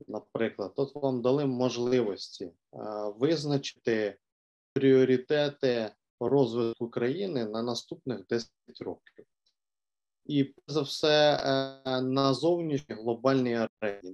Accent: native